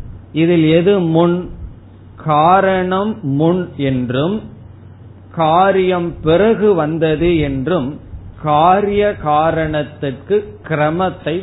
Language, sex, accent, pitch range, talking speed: Tamil, male, native, 130-180 Hz, 70 wpm